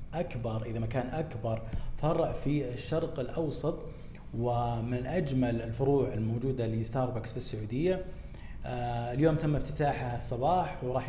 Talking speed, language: 120 wpm, Arabic